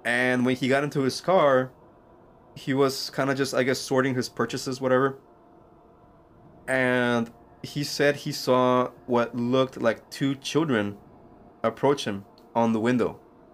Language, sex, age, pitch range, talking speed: English, male, 20-39, 115-140 Hz, 145 wpm